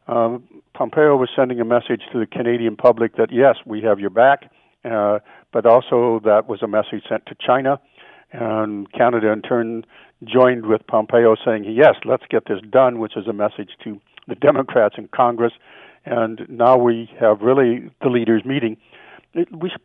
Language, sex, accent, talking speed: English, male, American, 175 wpm